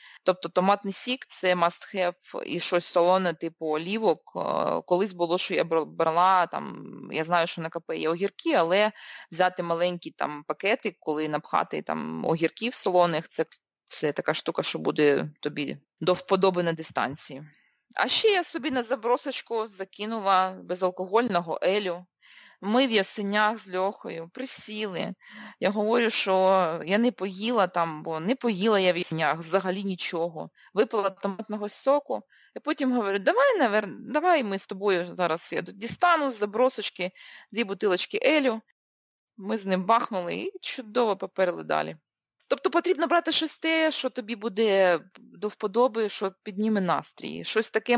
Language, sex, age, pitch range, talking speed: Ukrainian, female, 20-39, 175-230 Hz, 145 wpm